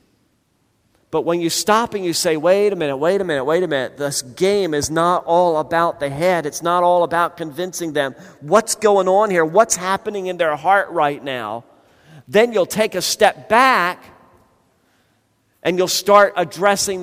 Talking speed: 180 wpm